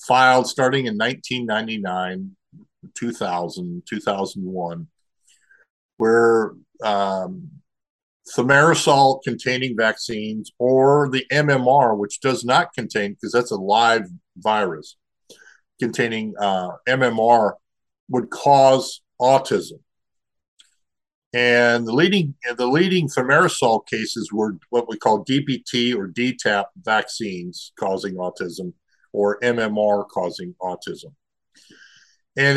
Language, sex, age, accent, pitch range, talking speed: English, male, 50-69, American, 110-140 Hz, 90 wpm